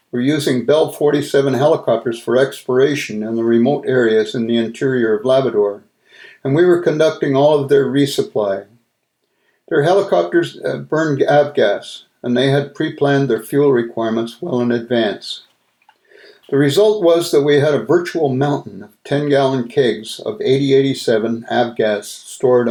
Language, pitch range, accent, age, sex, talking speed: English, 120-150 Hz, American, 60-79, male, 145 wpm